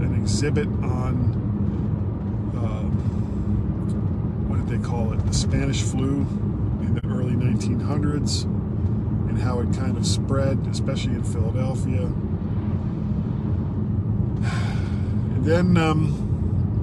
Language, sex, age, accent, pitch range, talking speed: English, male, 40-59, American, 105-115 Hz, 95 wpm